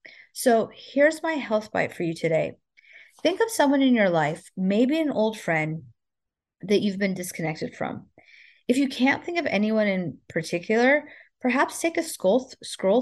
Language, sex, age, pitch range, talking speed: English, female, 30-49, 185-250 Hz, 165 wpm